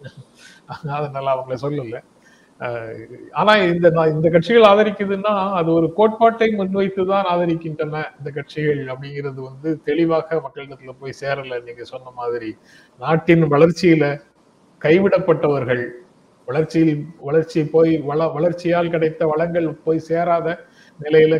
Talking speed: 105 wpm